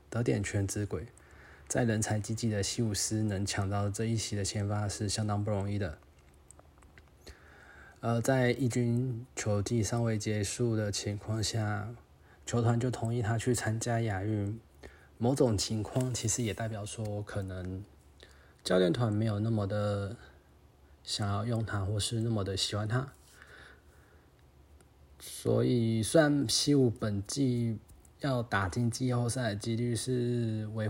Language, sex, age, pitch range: Chinese, male, 20-39, 95-115 Hz